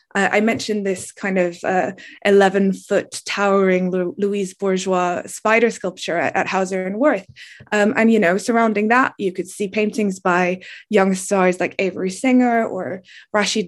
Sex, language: female, English